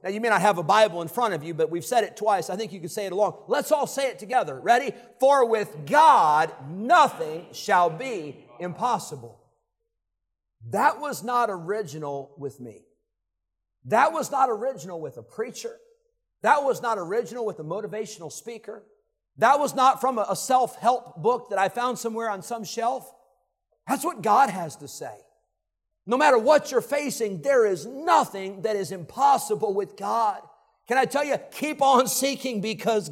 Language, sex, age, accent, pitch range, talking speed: English, male, 50-69, American, 195-275 Hz, 180 wpm